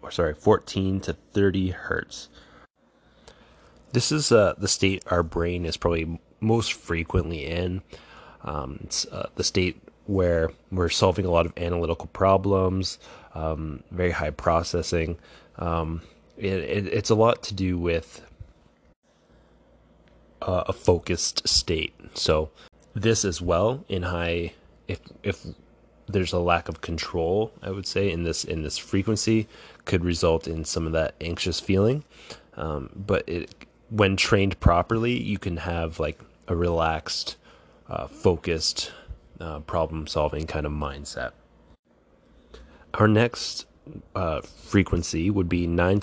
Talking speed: 130 wpm